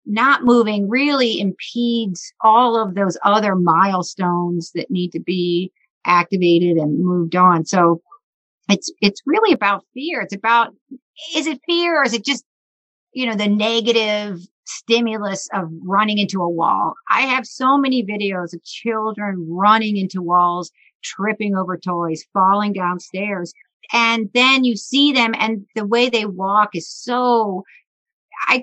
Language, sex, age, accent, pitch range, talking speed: English, female, 50-69, American, 195-250 Hz, 145 wpm